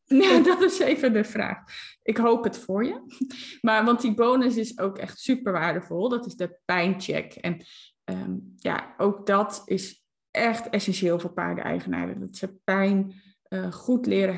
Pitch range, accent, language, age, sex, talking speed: 185-230 Hz, Dutch, Dutch, 20-39, female, 170 wpm